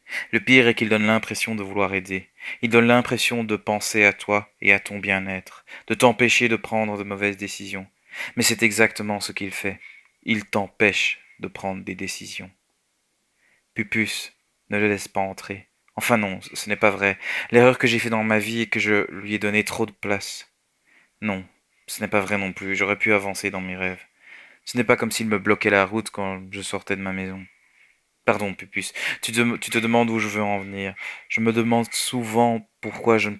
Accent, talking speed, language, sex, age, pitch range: French, 200 wpm, French, male, 20-39, 100-115 Hz